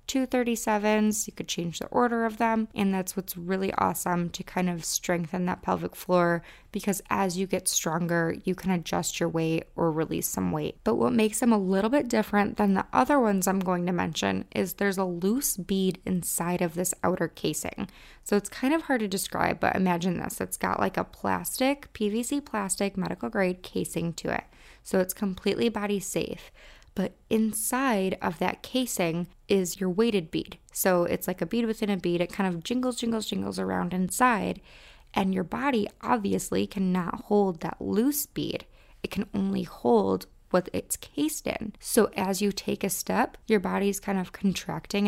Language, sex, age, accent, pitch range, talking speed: English, female, 20-39, American, 180-210 Hz, 190 wpm